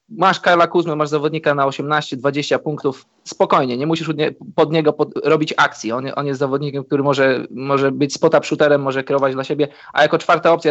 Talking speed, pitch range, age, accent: 190 wpm, 145-160 Hz, 20-39, native